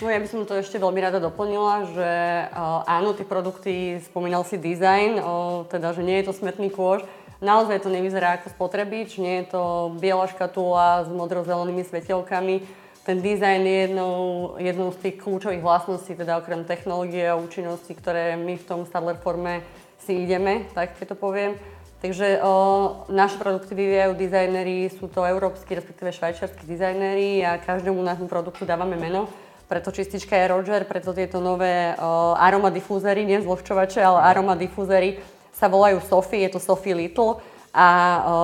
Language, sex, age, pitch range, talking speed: Slovak, female, 20-39, 175-195 Hz, 160 wpm